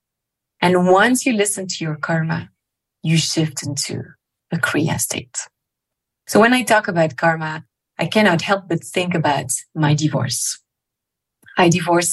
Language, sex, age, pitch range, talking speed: English, female, 30-49, 155-190 Hz, 145 wpm